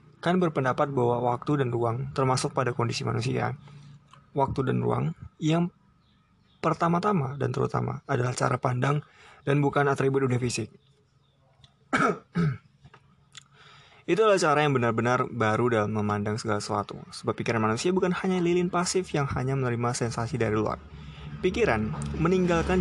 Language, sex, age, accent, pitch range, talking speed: Indonesian, male, 20-39, native, 115-145 Hz, 130 wpm